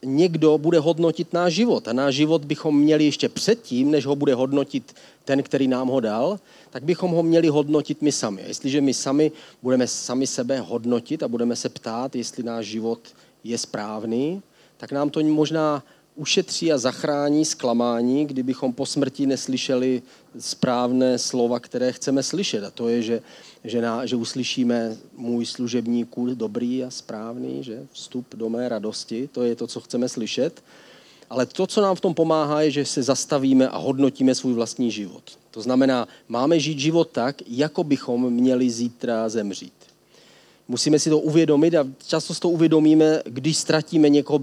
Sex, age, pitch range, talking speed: male, 40-59, 120-155 Hz, 170 wpm